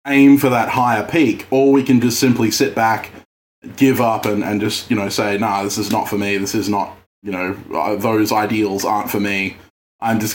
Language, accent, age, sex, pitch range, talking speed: English, Australian, 20-39, male, 100-120 Hz, 220 wpm